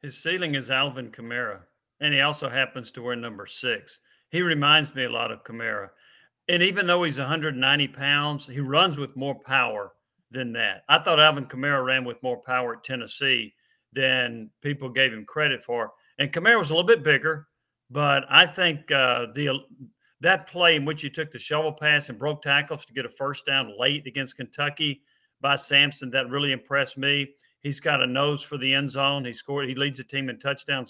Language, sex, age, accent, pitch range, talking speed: English, male, 40-59, American, 130-155 Hz, 200 wpm